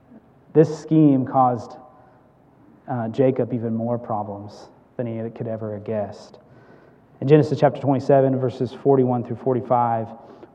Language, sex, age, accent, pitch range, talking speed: English, male, 30-49, American, 130-150 Hz, 125 wpm